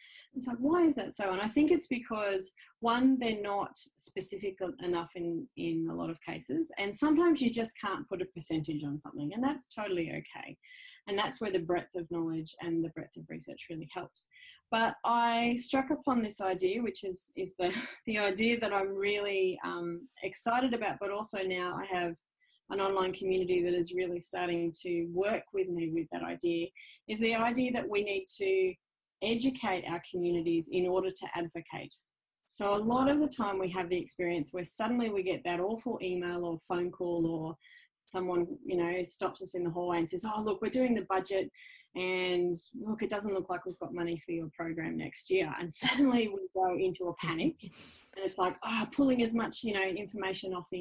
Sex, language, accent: female, English, Australian